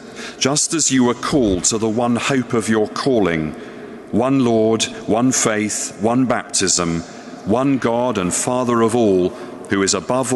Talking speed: 155 wpm